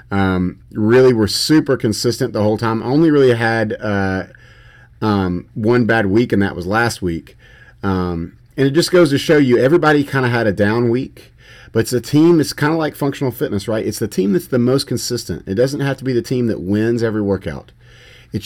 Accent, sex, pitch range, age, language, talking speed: American, male, 100-125 Hz, 30-49, English, 210 wpm